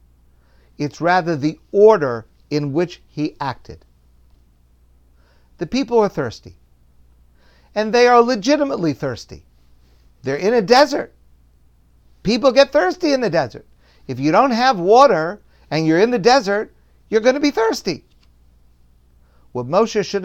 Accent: American